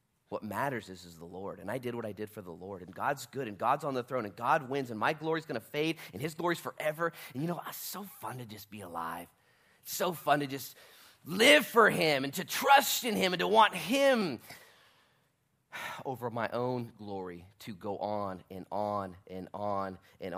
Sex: male